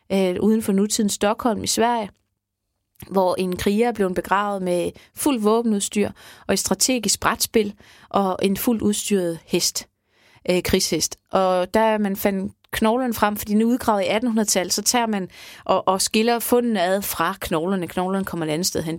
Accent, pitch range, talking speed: native, 180-220 Hz, 175 wpm